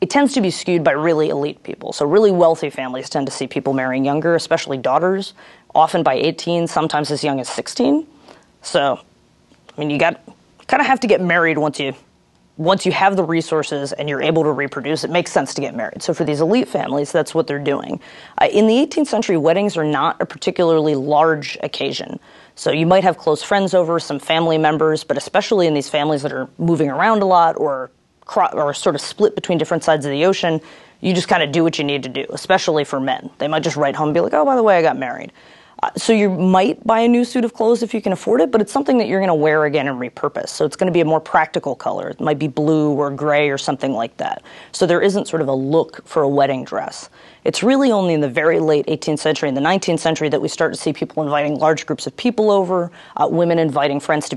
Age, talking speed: 30-49, 250 wpm